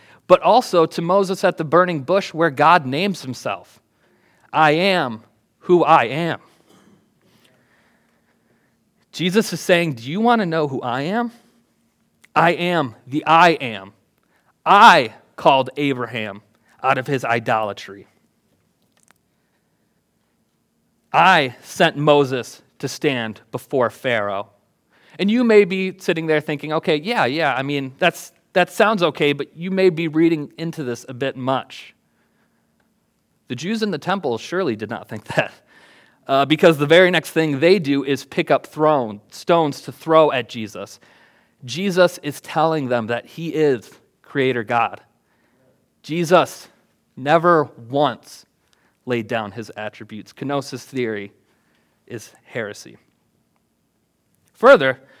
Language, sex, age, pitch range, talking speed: English, male, 30-49, 130-175 Hz, 130 wpm